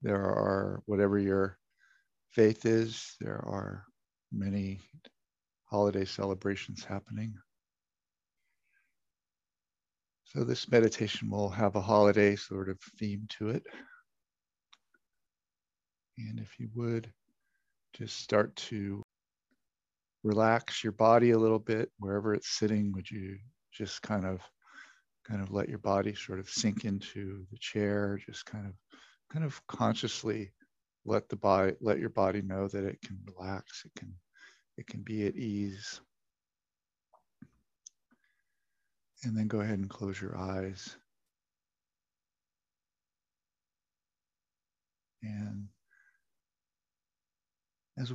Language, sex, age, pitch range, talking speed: English, male, 50-69, 80-110 Hz, 110 wpm